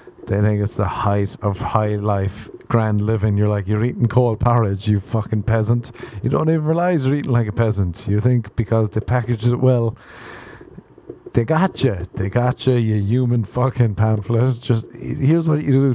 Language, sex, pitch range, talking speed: English, male, 110-135 Hz, 190 wpm